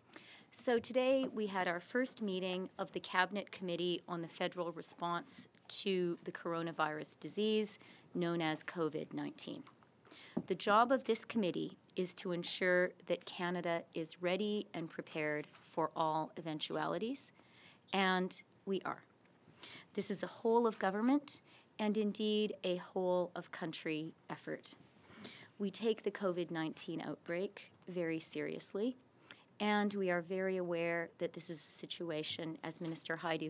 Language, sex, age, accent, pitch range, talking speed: English, female, 30-49, American, 165-200 Hz, 135 wpm